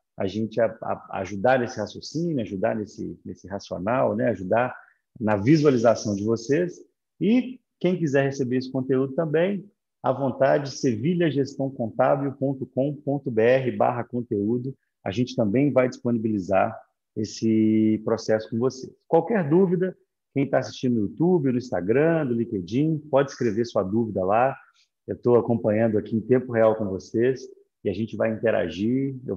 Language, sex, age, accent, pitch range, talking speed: Portuguese, male, 40-59, Brazilian, 110-140 Hz, 145 wpm